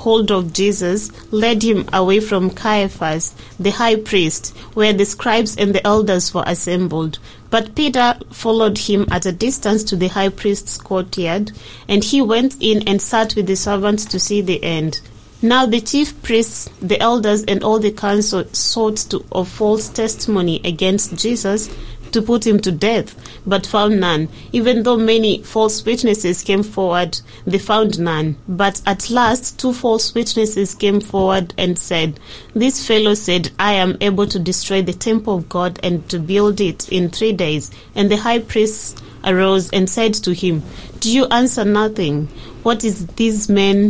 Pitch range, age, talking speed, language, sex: 180-220 Hz, 30-49, 170 wpm, English, female